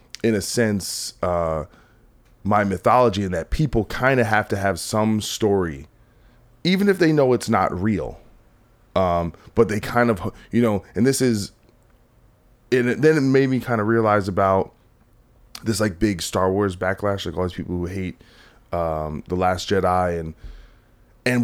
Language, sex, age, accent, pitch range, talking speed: English, male, 20-39, American, 90-120 Hz, 170 wpm